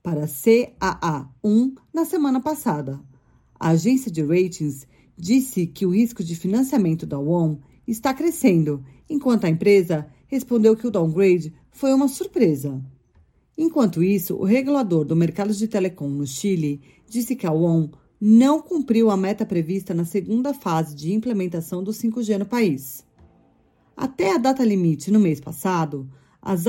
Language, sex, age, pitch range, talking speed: Portuguese, female, 40-59, 160-230 Hz, 145 wpm